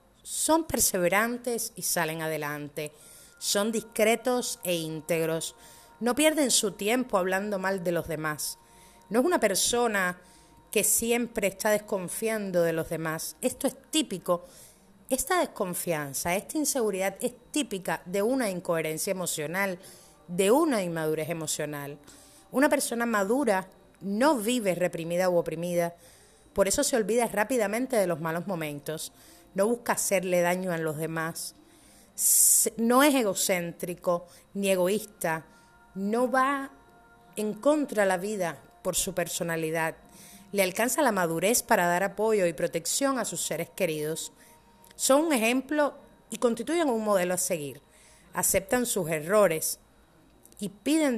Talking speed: 130 wpm